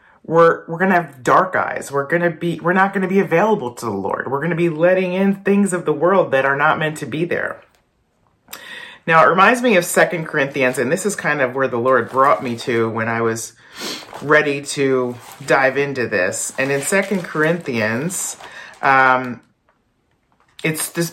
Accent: American